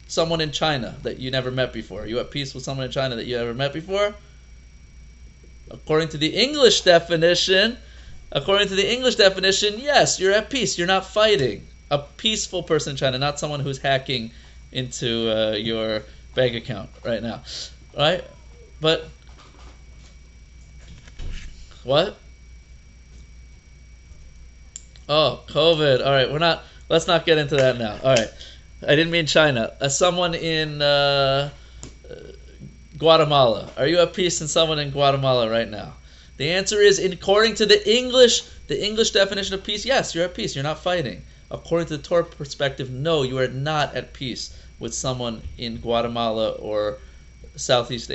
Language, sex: English, male